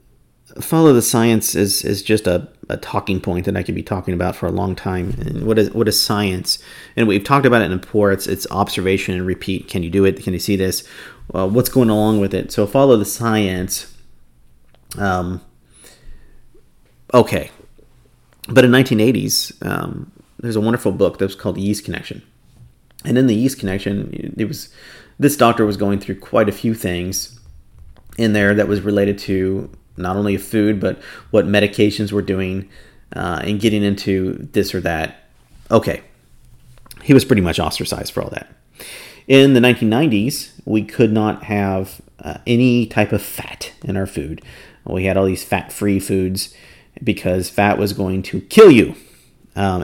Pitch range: 95-115 Hz